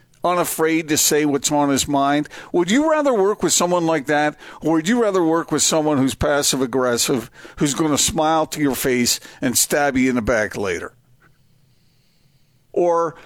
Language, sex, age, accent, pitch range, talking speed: English, male, 50-69, American, 130-165 Hz, 180 wpm